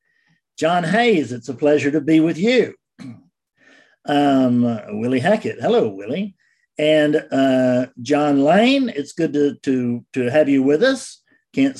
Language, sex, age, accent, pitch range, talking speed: English, male, 50-69, American, 125-170 Hz, 145 wpm